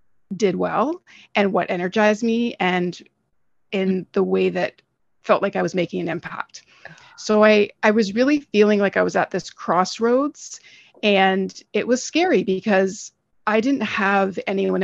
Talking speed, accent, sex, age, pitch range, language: 160 wpm, American, female, 30-49, 180-210 Hz, English